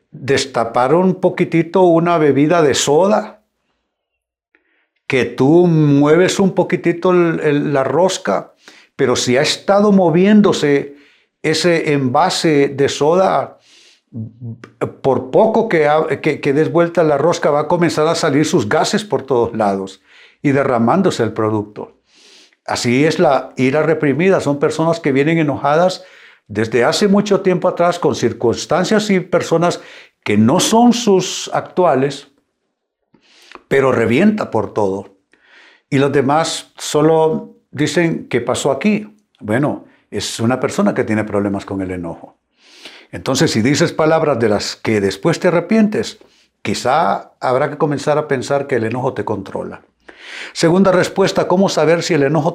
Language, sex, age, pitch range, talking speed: Spanish, male, 60-79, 130-180 Hz, 140 wpm